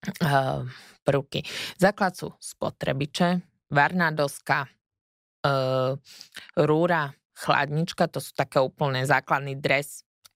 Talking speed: 85 wpm